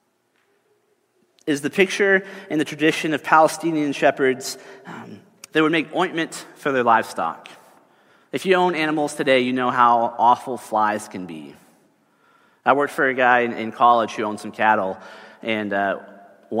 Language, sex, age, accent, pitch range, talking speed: English, male, 30-49, American, 115-150 Hz, 155 wpm